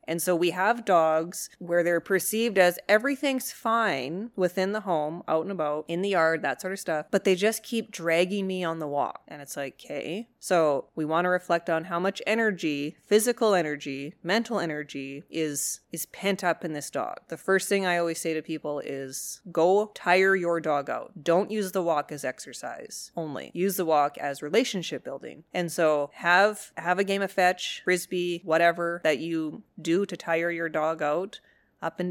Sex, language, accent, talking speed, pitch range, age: female, English, American, 195 wpm, 150-185 Hz, 30-49